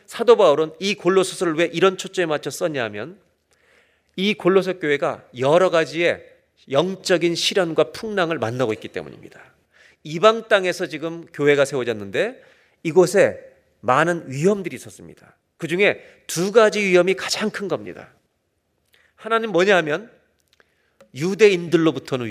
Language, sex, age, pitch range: Korean, male, 40-59, 155-205 Hz